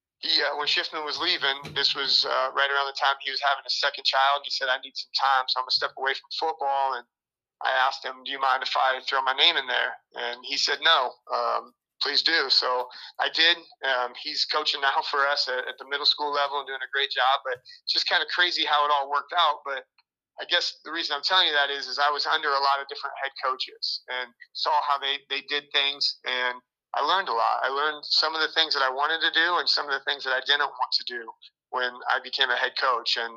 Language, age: English, 30-49